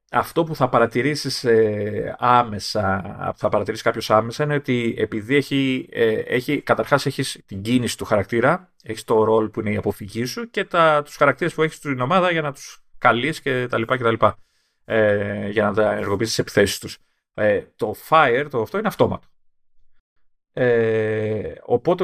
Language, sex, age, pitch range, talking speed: Greek, male, 30-49, 110-155 Hz, 170 wpm